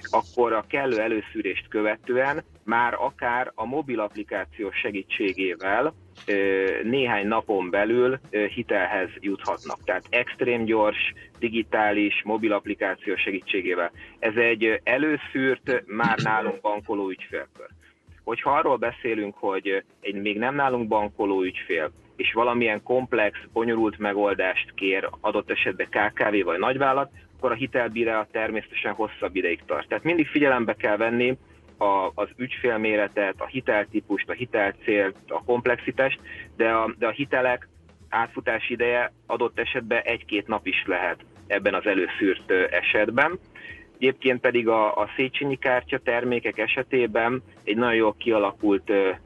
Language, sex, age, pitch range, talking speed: Hungarian, male, 30-49, 100-125 Hz, 120 wpm